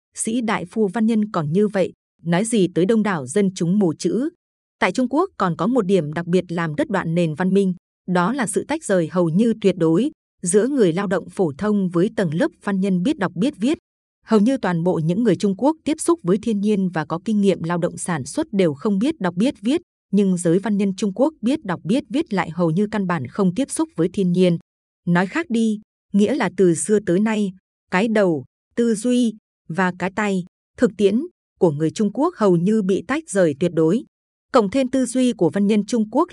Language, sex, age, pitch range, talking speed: Vietnamese, female, 20-39, 180-230 Hz, 235 wpm